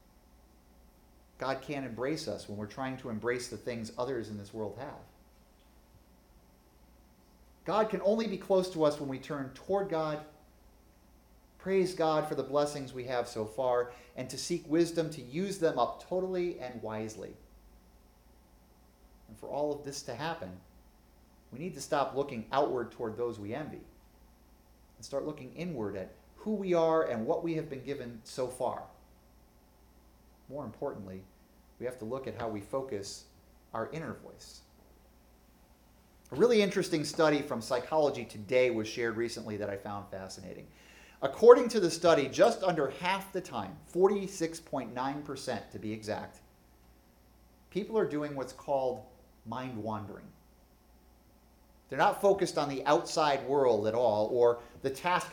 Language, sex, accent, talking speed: English, male, American, 150 wpm